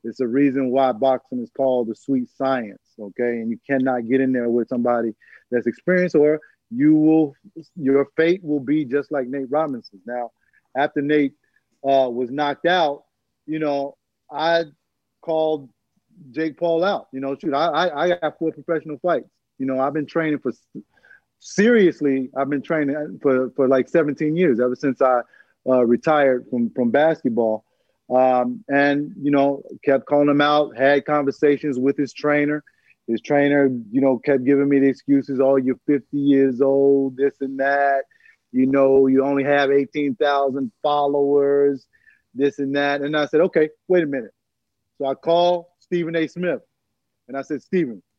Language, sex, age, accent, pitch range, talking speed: English, male, 30-49, American, 135-155 Hz, 170 wpm